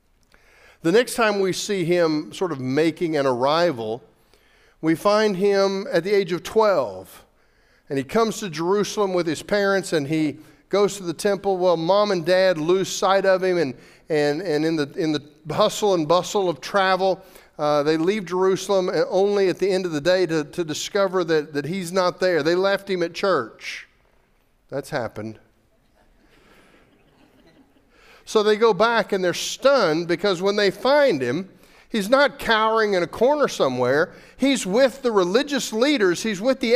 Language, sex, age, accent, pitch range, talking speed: English, male, 50-69, American, 155-205 Hz, 175 wpm